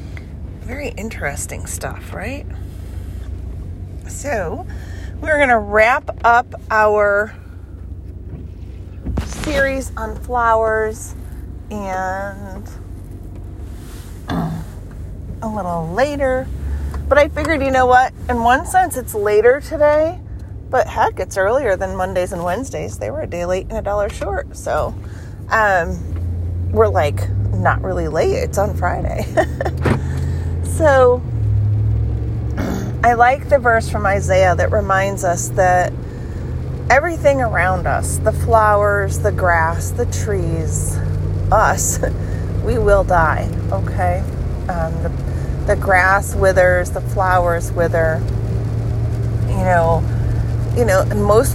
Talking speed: 110 wpm